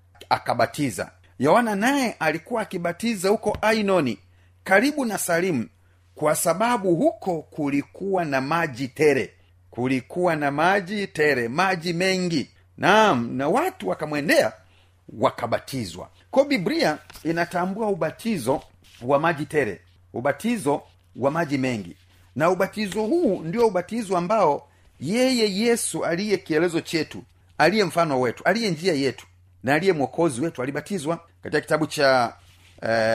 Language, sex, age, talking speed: Swahili, male, 40-59, 110 wpm